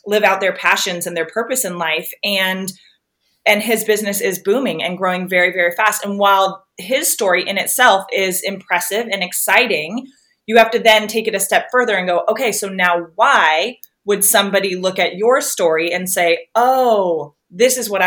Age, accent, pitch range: 20-39, American, 185-225 Hz